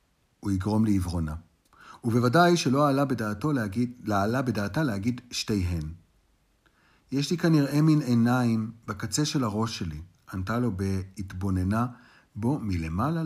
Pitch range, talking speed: 95-130 Hz, 110 wpm